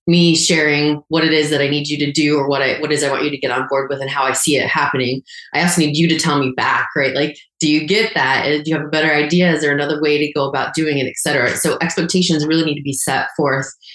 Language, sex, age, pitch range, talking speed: English, female, 20-39, 145-180 Hz, 295 wpm